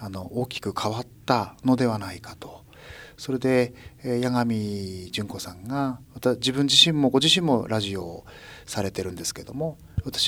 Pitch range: 100-135 Hz